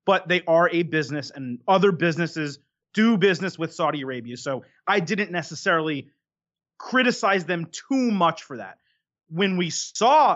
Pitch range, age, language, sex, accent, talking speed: 155-210 Hz, 30-49, English, male, American, 150 wpm